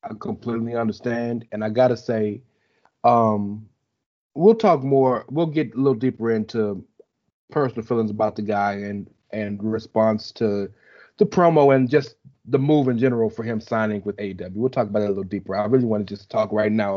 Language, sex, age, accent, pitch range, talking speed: English, male, 30-49, American, 110-150 Hz, 190 wpm